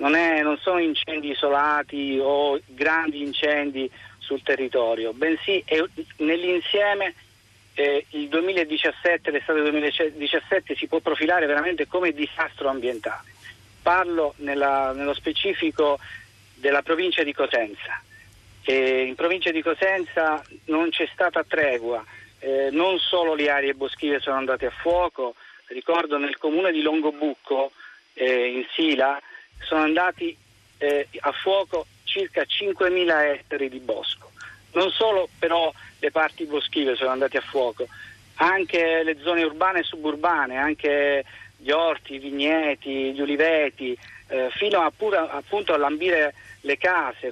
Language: Italian